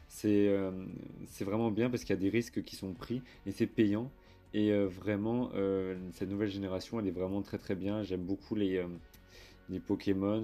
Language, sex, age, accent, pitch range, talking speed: French, male, 30-49, French, 95-110 Hz, 205 wpm